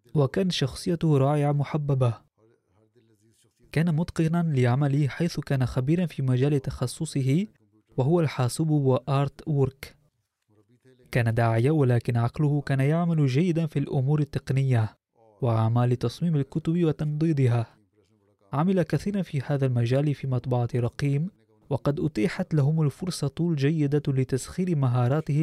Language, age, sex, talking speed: Arabic, 20-39, male, 110 wpm